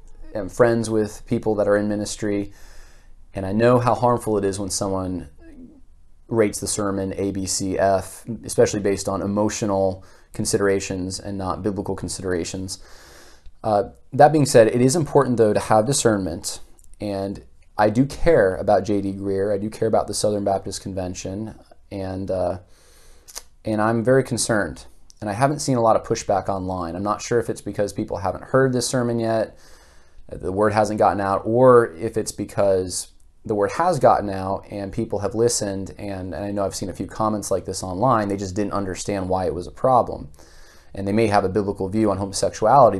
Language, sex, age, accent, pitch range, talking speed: English, male, 20-39, American, 90-110 Hz, 185 wpm